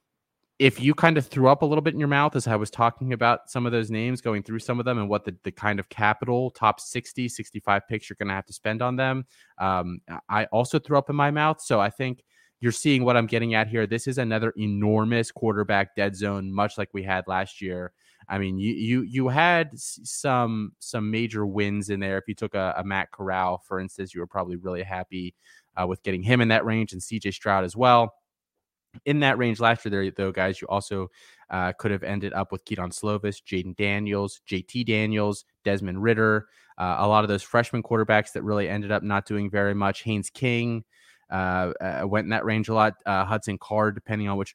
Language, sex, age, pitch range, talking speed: English, male, 20-39, 95-115 Hz, 225 wpm